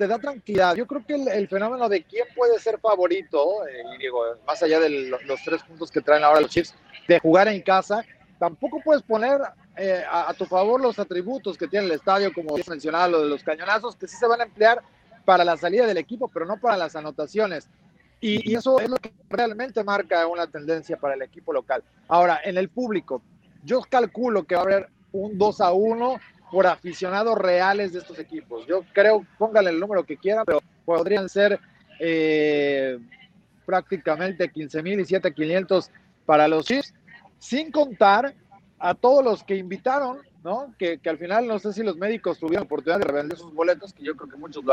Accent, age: Mexican, 40-59